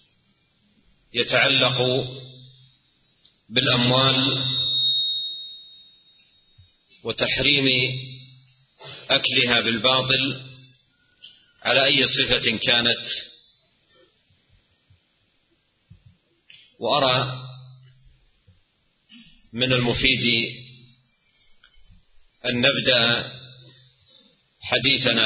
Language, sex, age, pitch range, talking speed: Indonesian, male, 40-59, 120-130 Hz, 35 wpm